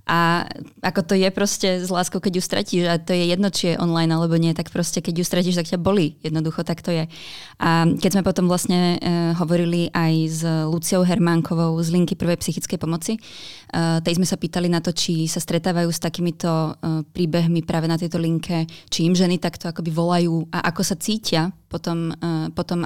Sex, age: female, 20-39